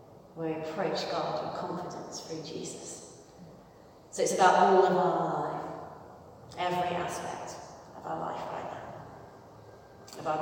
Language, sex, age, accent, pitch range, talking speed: English, female, 40-59, British, 105-175 Hz, 130 wpm